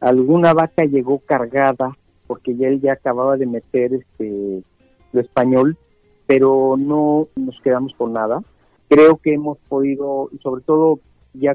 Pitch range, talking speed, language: 125-150 Hz, 145 wpm, Spanish